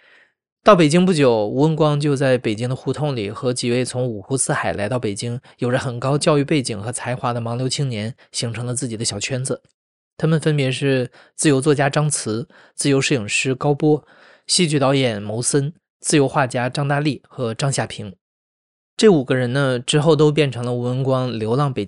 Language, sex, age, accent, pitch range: Chinese, male, 20-39, native, 120-150 Hz